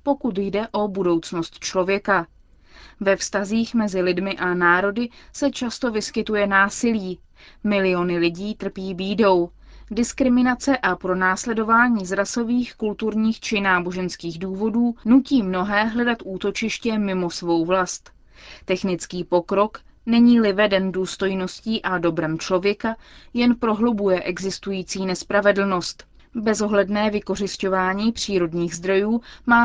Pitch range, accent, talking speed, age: 185-225 Hz, native, 105 wpm, 20-39